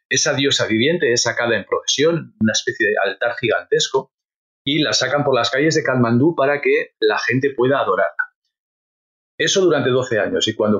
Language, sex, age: Spanish, male, 40-59